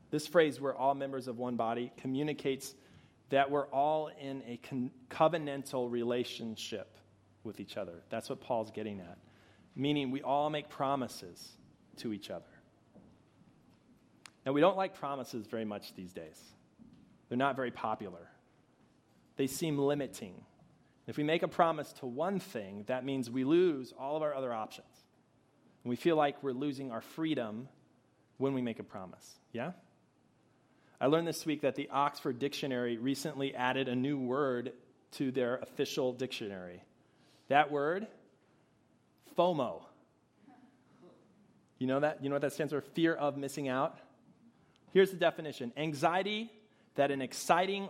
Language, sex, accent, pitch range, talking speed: English, male, American, 125-155 Hz, 150 wpm